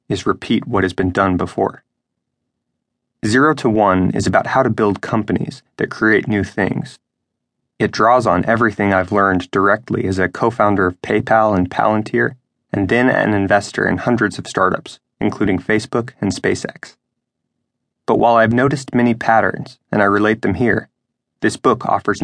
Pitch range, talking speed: 100-120 Hz, 160 wpm